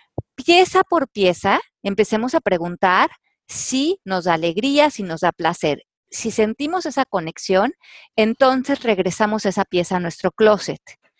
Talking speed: 135 wpm